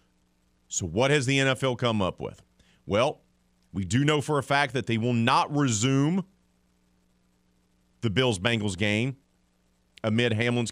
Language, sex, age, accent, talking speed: English, male, 40-59, American, 145 wpm